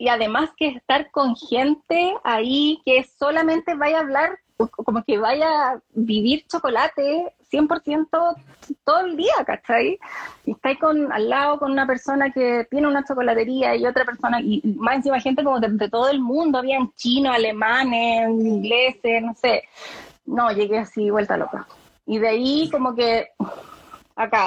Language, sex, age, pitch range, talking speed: Spanish, female, 20-39, 225-275 Hz, 165 wpm